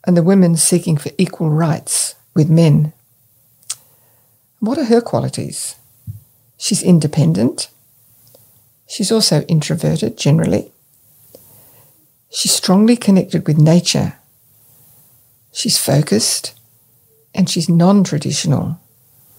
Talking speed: 90 wpm